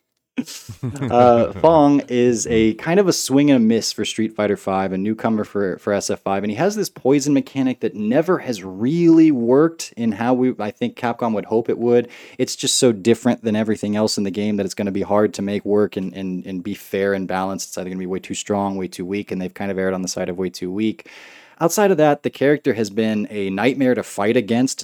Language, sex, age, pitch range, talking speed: English, male, 20-39, 100-135 Hz, 250 wpm